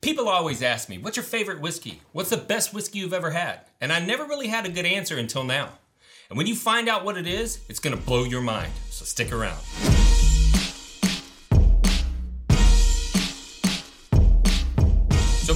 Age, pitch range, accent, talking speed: 30-49, 115-175 Hz, American, 160 wpm